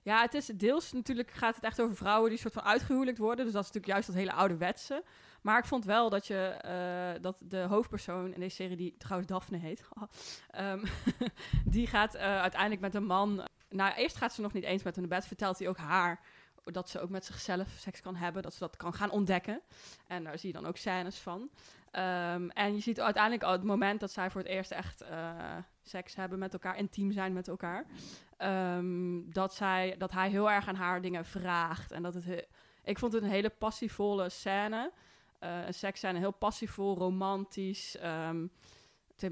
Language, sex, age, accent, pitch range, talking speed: Dutch, female, 20-39, Dutch, 180-205 Hz, 210 wpm